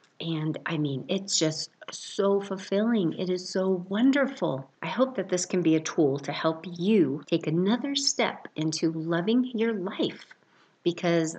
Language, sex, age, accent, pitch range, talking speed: English, female, 50-69, American, 160-215 Hz, 160 wpm